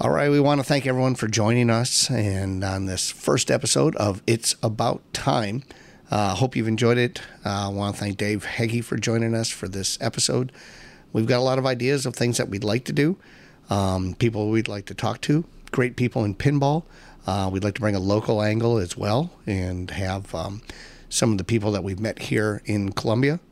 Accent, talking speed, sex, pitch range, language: American, 215 wpm, male, 100-130 Hz, English